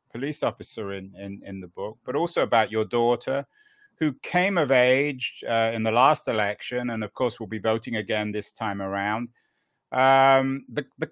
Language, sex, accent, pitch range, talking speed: English, male, British, 110-130 Hz, 185 wpm